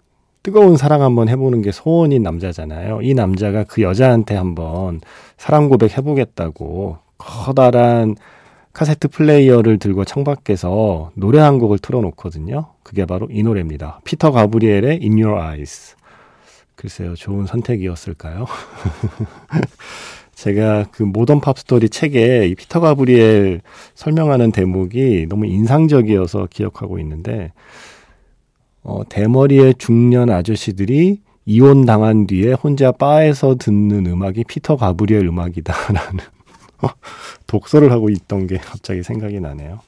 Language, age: Korean, 40-59